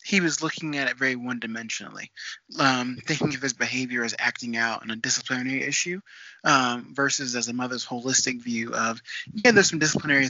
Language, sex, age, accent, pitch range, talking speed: English, male, 20-39, American, 120-150 Hz, 175 wpm